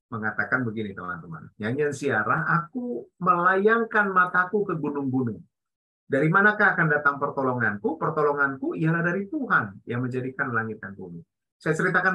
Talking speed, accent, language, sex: 130 wpm, native, Indonesian, male